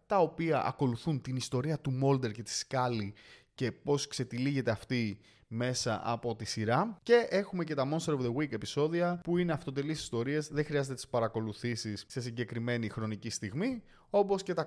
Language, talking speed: Greek, 170 wpm